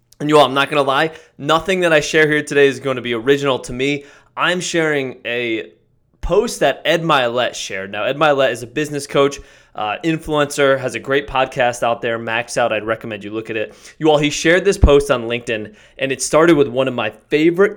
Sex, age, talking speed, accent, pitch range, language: male, 20-39, 230 wpm, American, 115-150 Hz, English